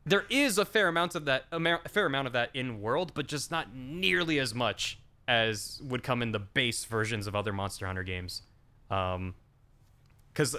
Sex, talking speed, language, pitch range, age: male, 195 wpm, English, 115-170 Hz, 20-39